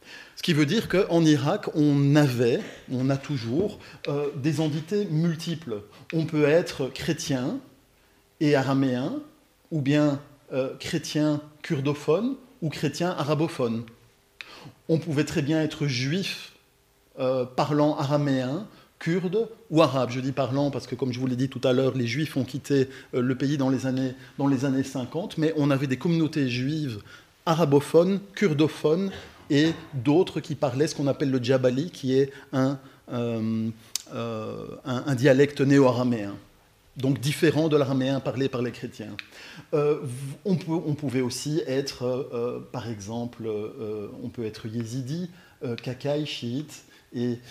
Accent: French